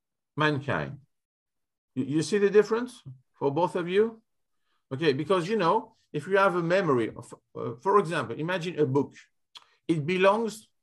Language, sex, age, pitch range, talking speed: Greek, male, 50-69, 145-200 Hz, 150 wpm